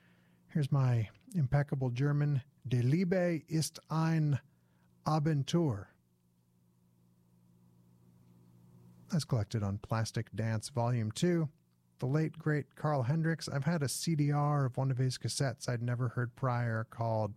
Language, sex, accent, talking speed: English, male, American, 120 wpm